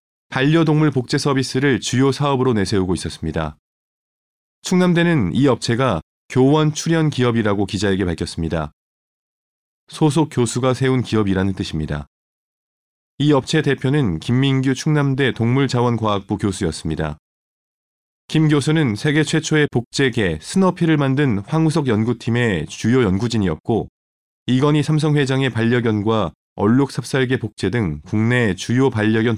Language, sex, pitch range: Korean, male, 105-140 Hz